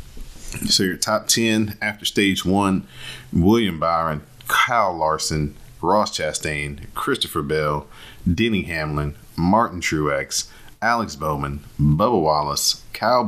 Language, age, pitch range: English, 40-59, 75-85 Hz